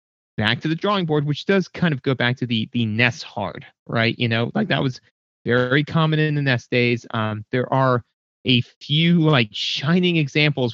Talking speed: 200 wpm